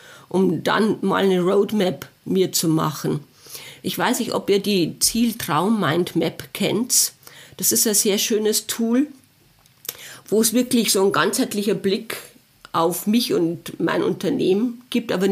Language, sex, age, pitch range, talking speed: German, female, 40-59, 180-235 Hz, 145 wpm